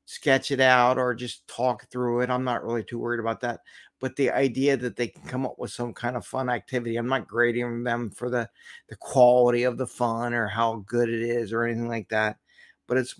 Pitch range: 115-140 Hz